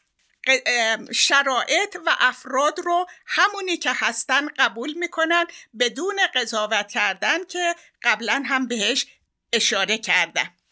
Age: 50-69